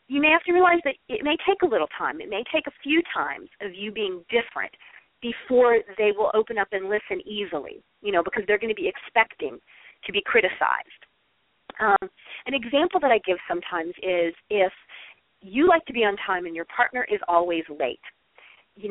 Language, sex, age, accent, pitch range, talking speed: English, female, 40-59, American, 205-335 Hz, 200 wpm